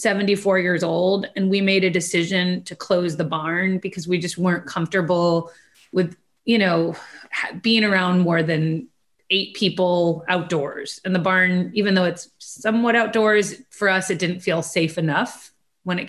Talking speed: 165 wpm